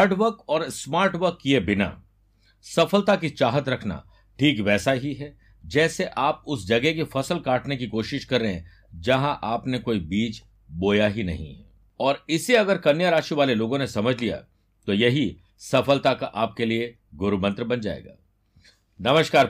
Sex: male